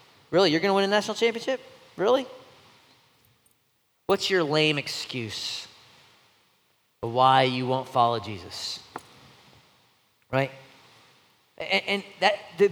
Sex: male